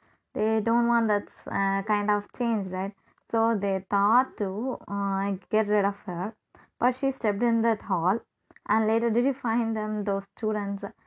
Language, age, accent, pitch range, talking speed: English, 20-39, Indian, 195-225 Hz, 180 wpm